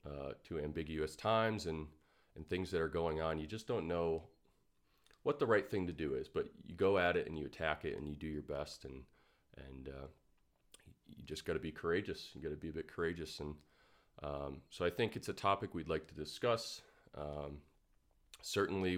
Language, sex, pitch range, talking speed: English, male, 75-90 Hz, 210 wpm